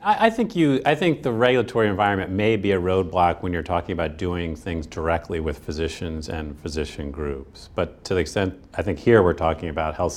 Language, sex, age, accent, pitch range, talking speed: English, male, 40-59, American, 75-90 Hz, 205 wpm